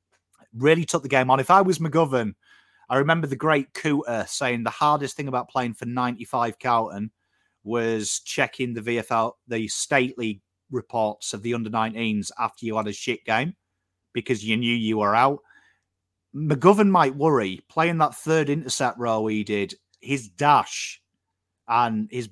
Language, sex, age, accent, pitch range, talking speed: English, male, 30-49, British, 110-150 Hz, 160 wpm